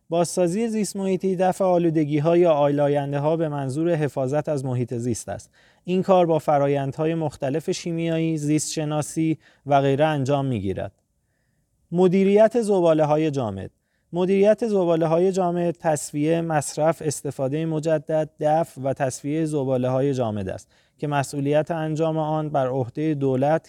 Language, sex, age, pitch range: Persian, male, 30-49, 140-170 Hz